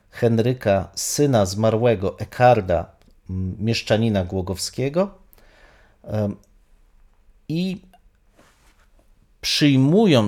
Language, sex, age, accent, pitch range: Polish, male, 40-59, native, 105-140 Hz